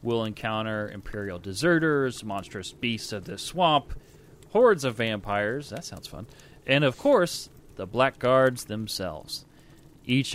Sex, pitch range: male, 110-145 Hz